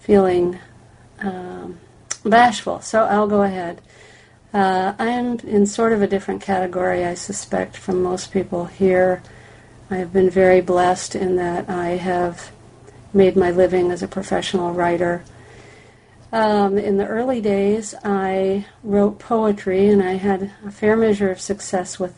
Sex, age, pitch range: female, 50-69, 180-200 Hz